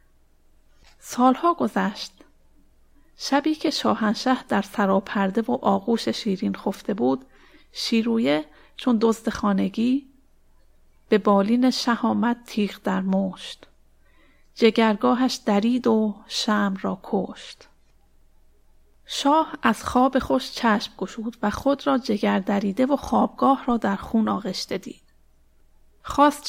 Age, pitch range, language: 30-49, 195-245 Hz, Persian